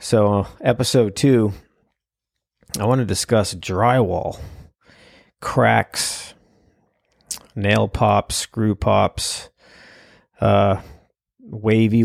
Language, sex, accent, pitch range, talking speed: English, male, American, 95-110 Hz, 75 wpm